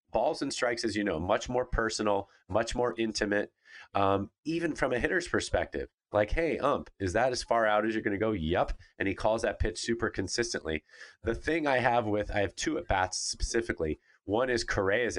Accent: American